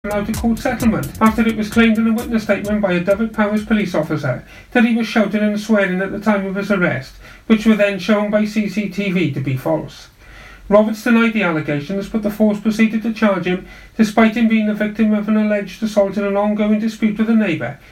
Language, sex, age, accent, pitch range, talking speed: English, male, 40-59, British, 170-220 Hz, 220 wpm